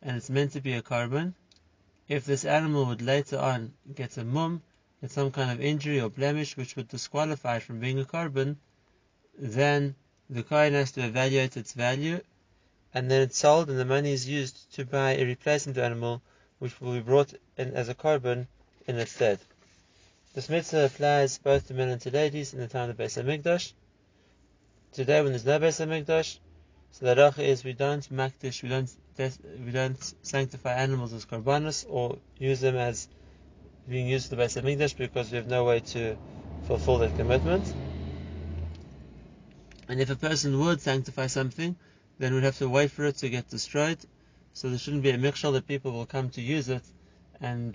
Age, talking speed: 30-49, 185 wpm